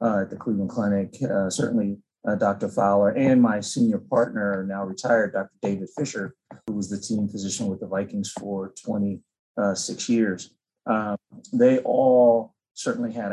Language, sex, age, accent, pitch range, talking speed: English, male, 30-49, American, 100-125 Hz, 160 wpm